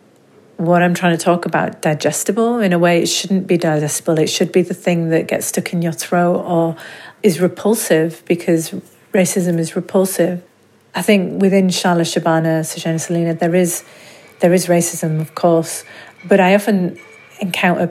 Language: English